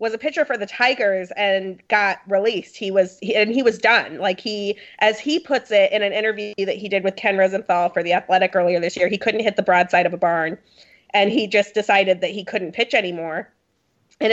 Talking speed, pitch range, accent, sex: 230 wpm, 180-210 Hz, American, female